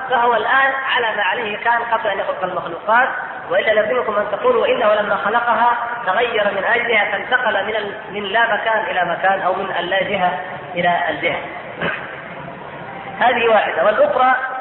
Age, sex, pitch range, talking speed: 30-49, female, 185-235 Hz, 140 wpm